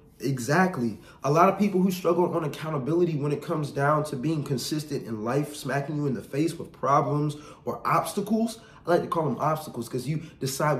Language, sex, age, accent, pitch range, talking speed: English, male, 20-39, American, 145-180 Hz, 200 wpm